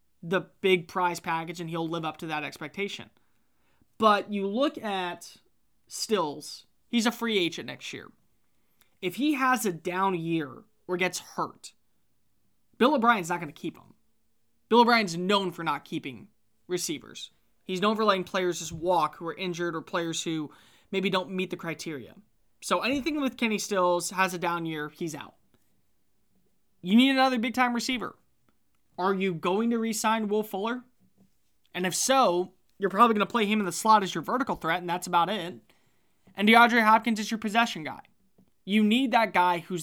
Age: 20-39